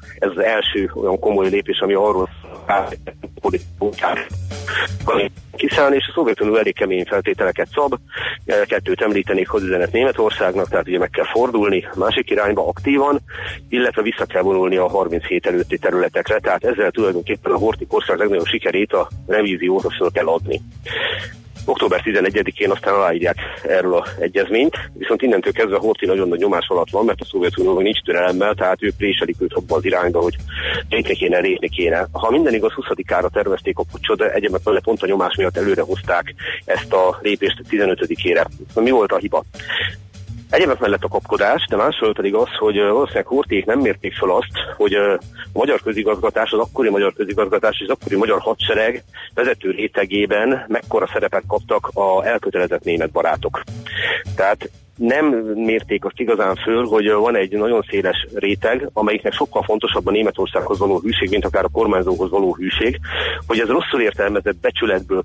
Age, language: 40-59, Hungarian